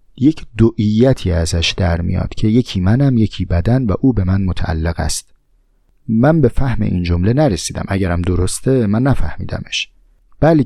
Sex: male